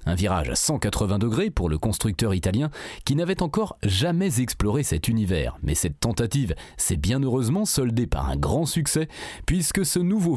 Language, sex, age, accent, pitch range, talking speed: French, male, 30-49, French, 110-170 Hz, 175 wpm